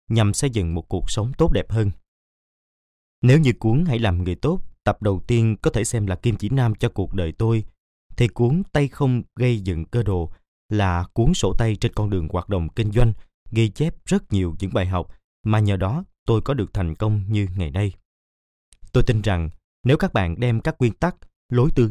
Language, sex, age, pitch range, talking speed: Vietnamese, male, 20-39, 95-120 Hz, 215 wpm